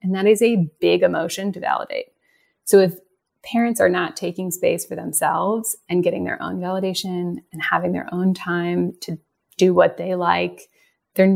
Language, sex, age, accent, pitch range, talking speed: English, female, 30-49, American, 185-235 Hz, 175 wpm